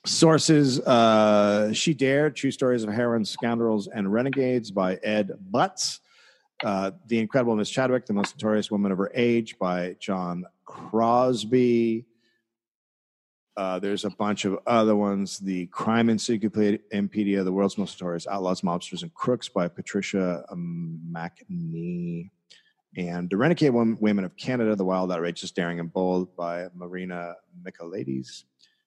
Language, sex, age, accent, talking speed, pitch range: English, male, 40-59, American, 140 wpm, 90-115 Hz